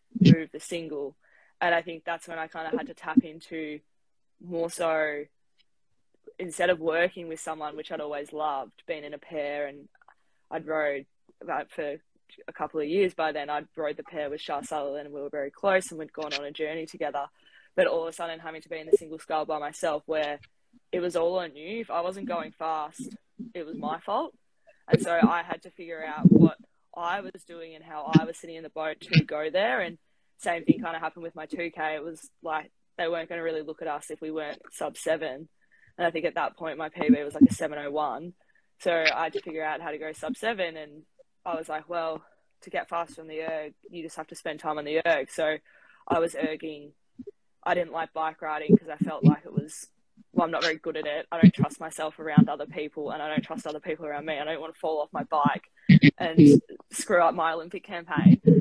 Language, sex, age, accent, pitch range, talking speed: English, female, 10-29, Australian, 155-170 Hz, 235 wpm